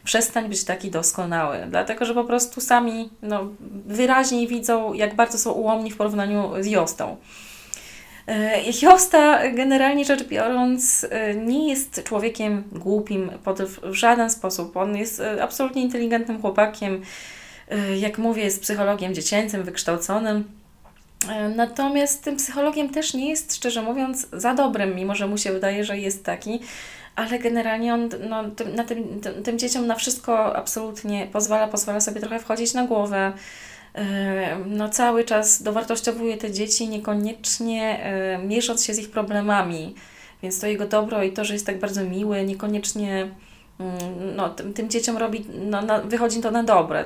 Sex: female